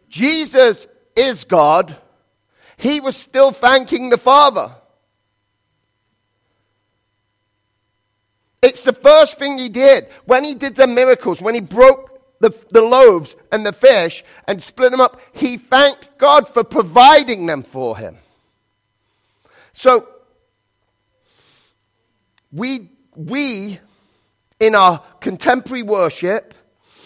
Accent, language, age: British, English, 40-59